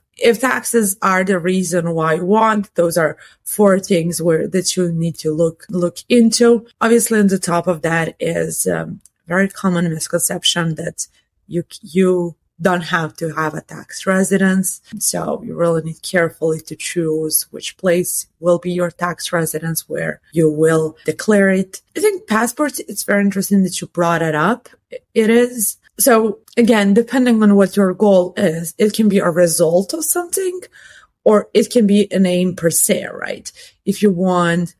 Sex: female